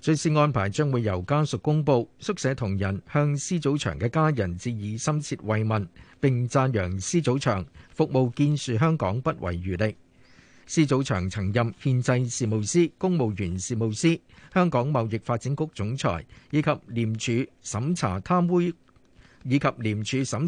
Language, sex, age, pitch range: Chinese, male, 50-69, 105-145 Hz